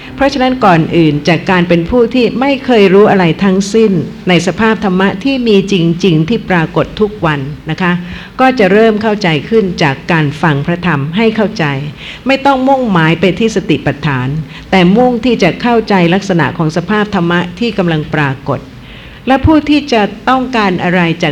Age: 60-79